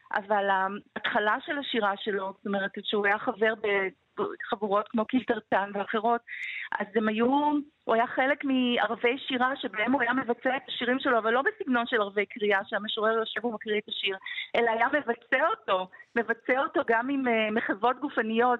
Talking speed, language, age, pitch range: 165 wpm, Hebrew, 40-59, 210-260 Hz